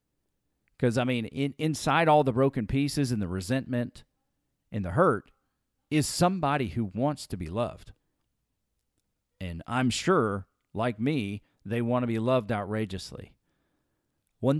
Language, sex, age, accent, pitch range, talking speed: English, male, 40-59, American, 95-125 Hz, 135 wpm